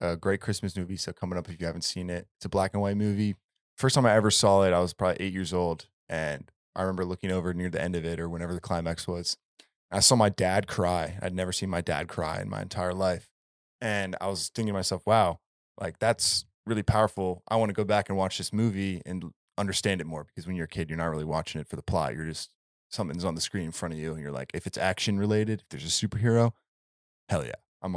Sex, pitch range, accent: male, 90-105 Hz, American